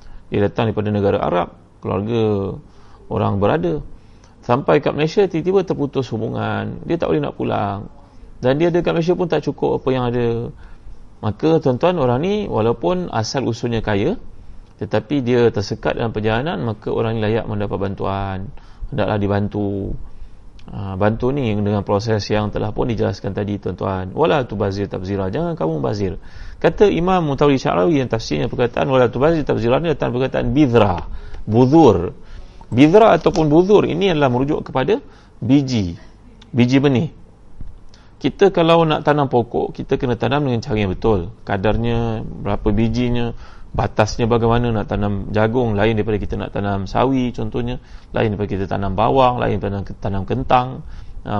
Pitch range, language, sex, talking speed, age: 100-140 Hz, Malay, male, 155 wpm, 30-49